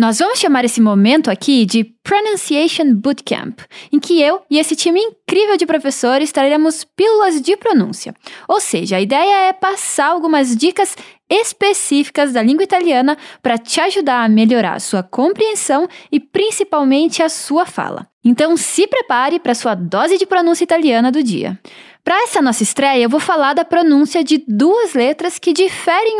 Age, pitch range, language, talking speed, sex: 10-29, 245-360 Hz, Portuguese, 165 wpm, female